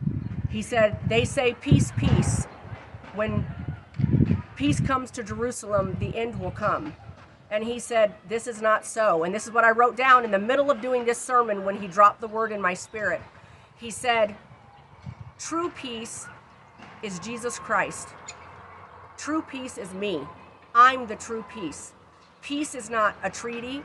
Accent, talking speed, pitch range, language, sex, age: American, 160 wpm, 205-245 Hz, English, female, 40-59